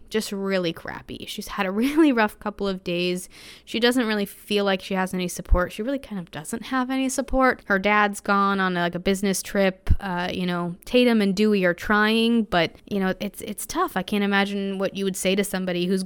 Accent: American